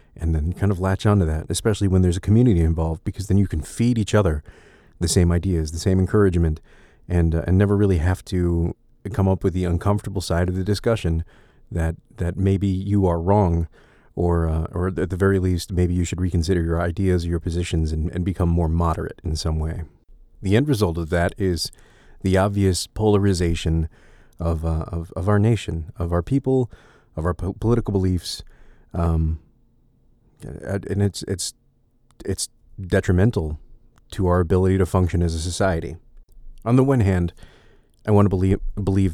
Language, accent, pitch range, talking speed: English, American, 85-100 Hz, 180 wpm